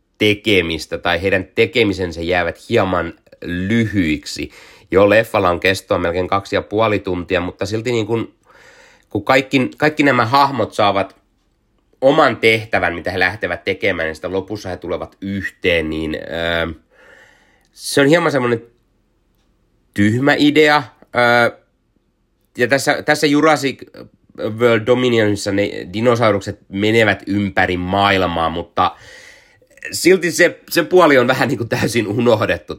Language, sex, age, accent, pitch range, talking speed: Finnish, male, 30-49, native, 90-115 Hz, 125 wpm